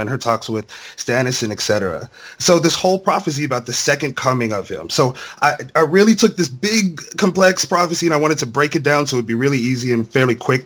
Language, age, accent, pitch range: English, 30-49, American, 125-180 Hz